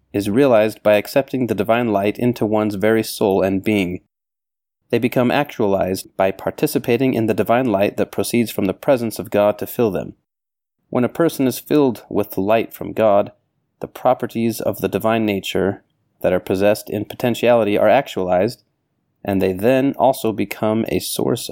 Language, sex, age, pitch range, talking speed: English, male, 30-49, 95-115 Hz, 175 wpm